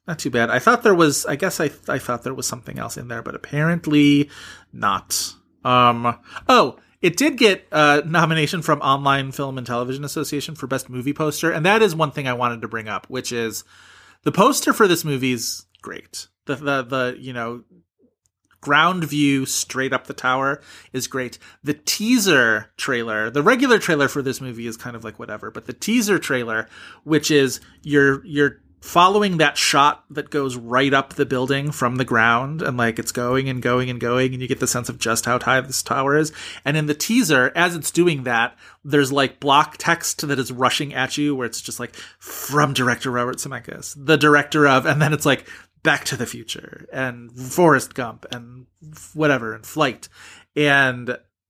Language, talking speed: English, 195 wpm